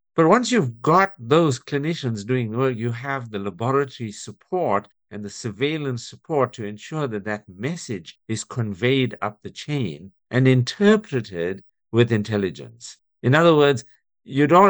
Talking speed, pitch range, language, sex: 150 wpm, 105-145 Hz, English, male